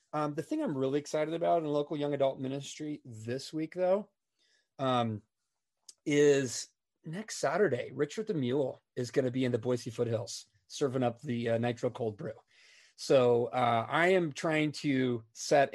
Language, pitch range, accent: English, 115-145 Hz, American